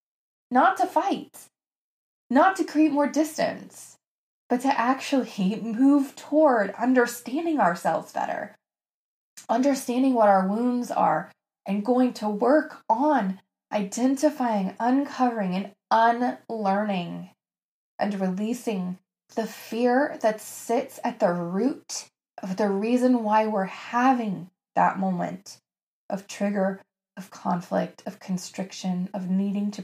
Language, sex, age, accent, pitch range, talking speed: English, female, 20-39, American, 195-260 Hz, 115 wpm